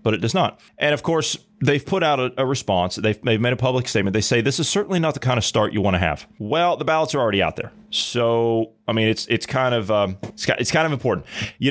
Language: English